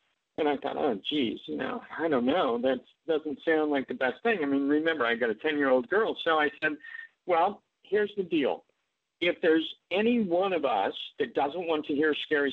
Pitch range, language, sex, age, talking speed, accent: 170-215 Hz, English, male, 50-69, 210 wpm, American